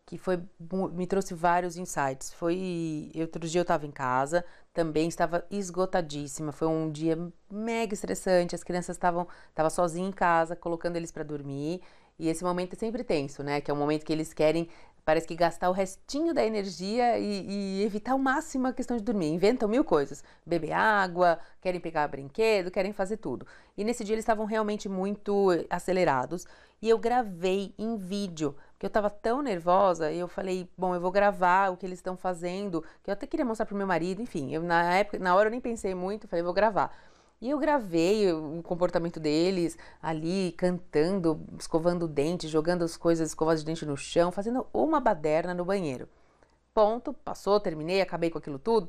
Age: 30-49